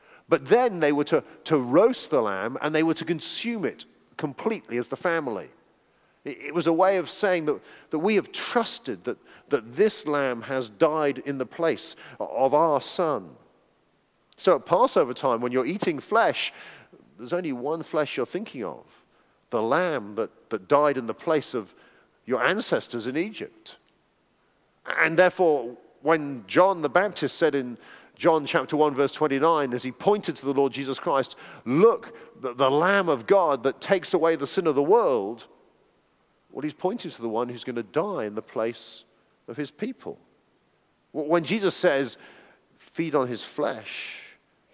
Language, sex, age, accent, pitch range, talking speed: English, male, 40-59, British, 130-175 Hz, 170 wpm